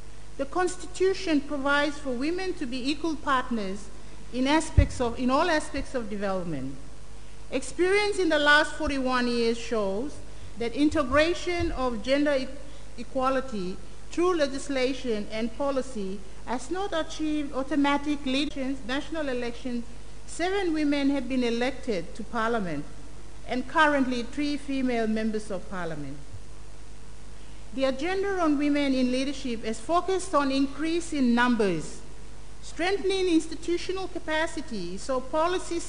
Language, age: English, 50-69